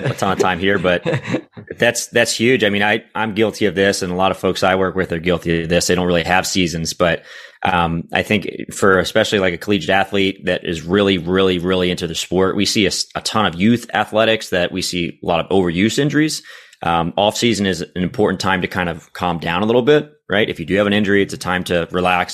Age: 30-49